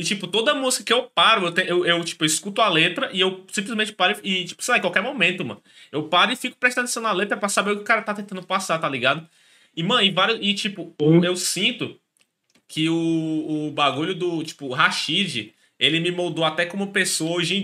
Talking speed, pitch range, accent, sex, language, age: 225 wpm, 165-215 Hz, Brazilian, male, Portuguese, 20-39